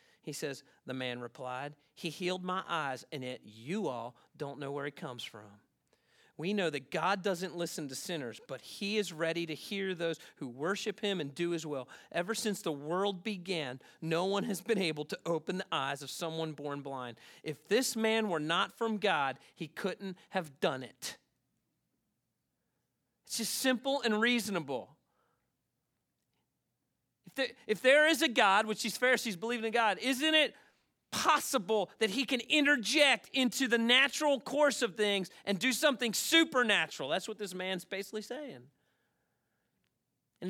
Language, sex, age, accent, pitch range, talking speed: English, male, 40-59, American, 170-260 Hz, 165 wpm